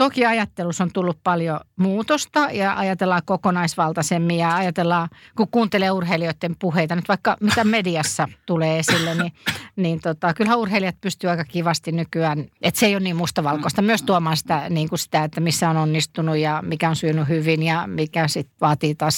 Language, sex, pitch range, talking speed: Finnish, female, 160-200 Hz, 175 wpm